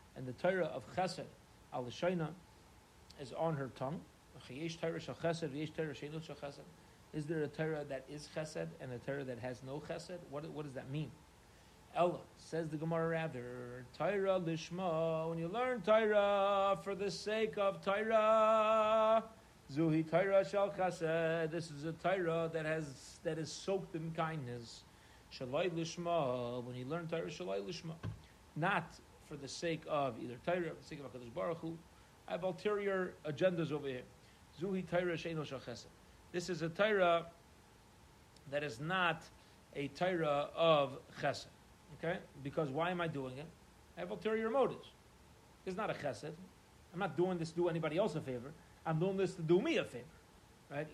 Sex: male